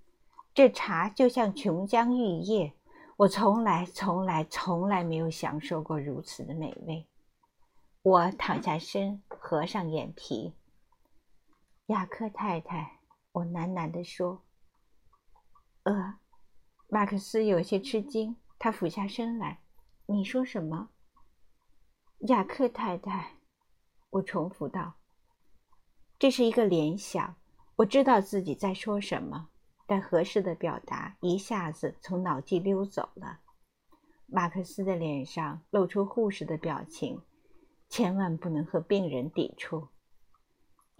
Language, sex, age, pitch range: Chinese, female, 50-69, 170-215 Hz